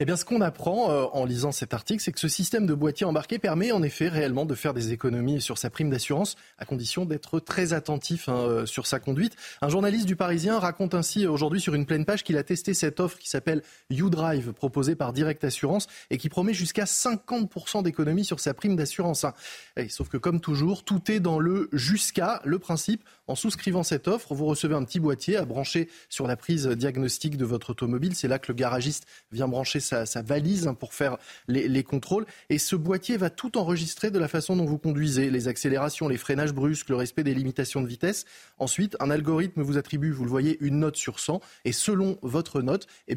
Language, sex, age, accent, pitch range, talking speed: French, male, 20-39, French, 140-185 Hz, 215 wpm